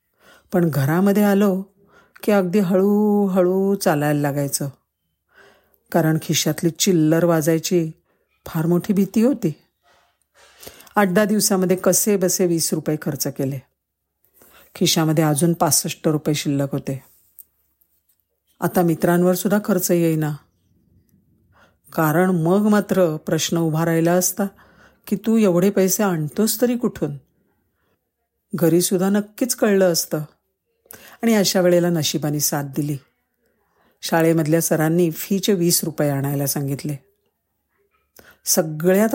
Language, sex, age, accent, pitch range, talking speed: Marathi, female, 50-69, native, 155-195 Hz, 105 wpm